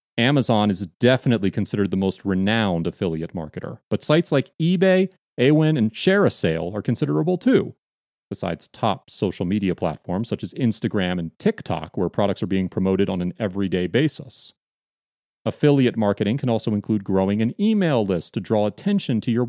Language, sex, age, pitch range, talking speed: English, male, 30-49, 100-155 Hz, 160 wpm